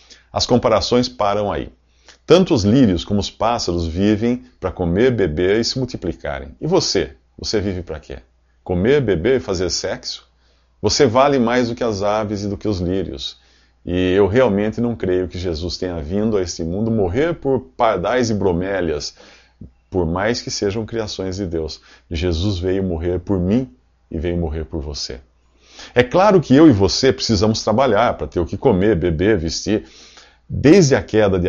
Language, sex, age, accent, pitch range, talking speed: English, male, 50-69, Brazilian, 85-110 Hz, 175 wpm